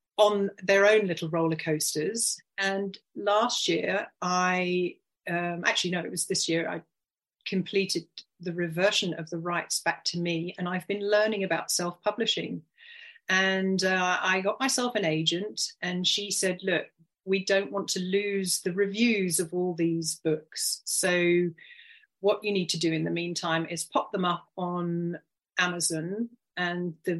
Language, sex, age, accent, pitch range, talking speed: English, female, 40-59, British, 170-205 Hz, 160 wpm